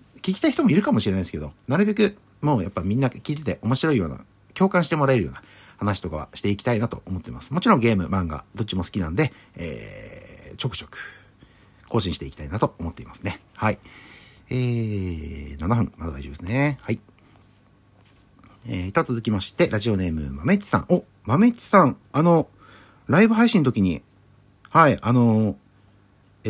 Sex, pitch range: male, 100-150 Hz